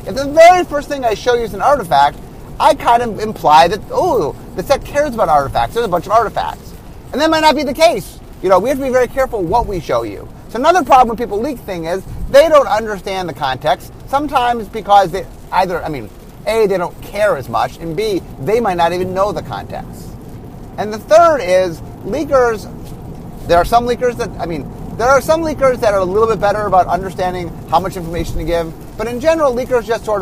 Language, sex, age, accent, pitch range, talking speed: English, male, 30-49, American, 165-250 Hz, 225 wpm